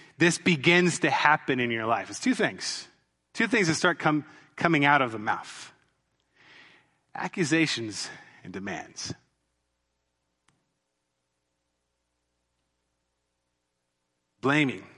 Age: 30-49